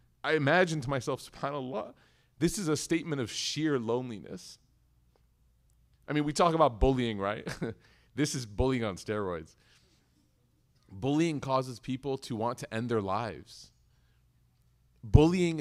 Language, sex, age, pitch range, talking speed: English, male, 30-49, 110-160 Hz, 130 wpm